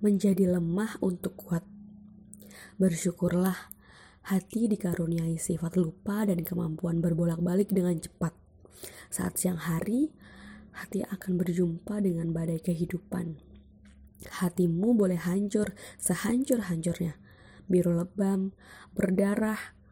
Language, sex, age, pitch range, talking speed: Indonesian, female, 20-39, 170-200 Hz, 90 wpm